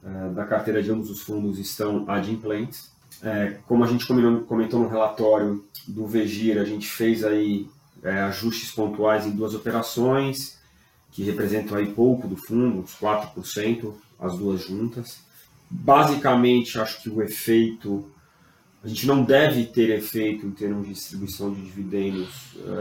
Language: Portuguese